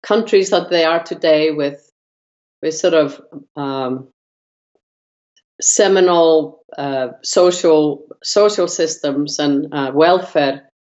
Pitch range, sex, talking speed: 145-175 Hz, female, 100 wpm